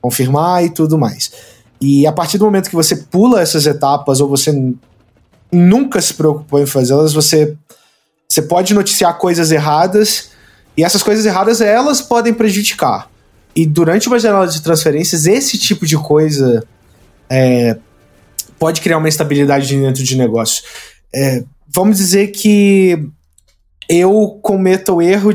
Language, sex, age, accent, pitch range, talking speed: Portuguese, male, 20-39, Brazilian, 150-225 Hz, 135 wpm